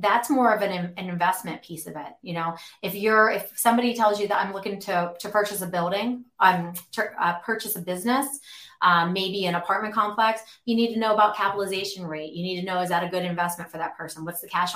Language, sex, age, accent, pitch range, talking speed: English, female, 30-49, American, 175-220 Hz, 235 wpm